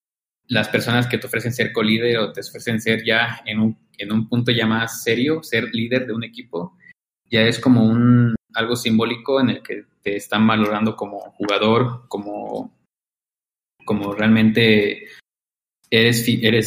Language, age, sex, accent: Spanish, 20-39, male, Mexican